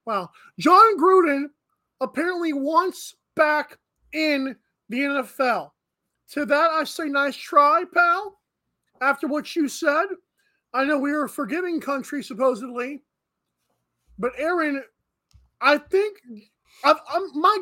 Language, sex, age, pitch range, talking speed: English, male, 20-39, 250-320 Hz, 125 wpm